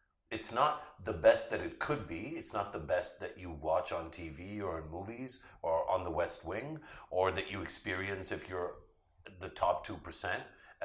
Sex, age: male, 50-69